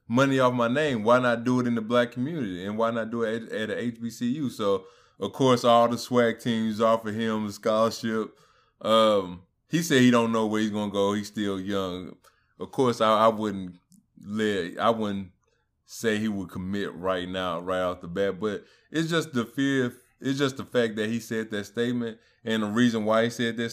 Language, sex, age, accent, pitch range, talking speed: English, male, 20-39, American, 105-120 Hz, 215 wpm